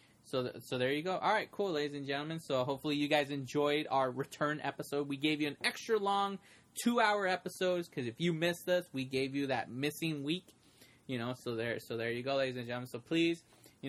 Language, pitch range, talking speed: English, 125-150 Hz, 225 wpm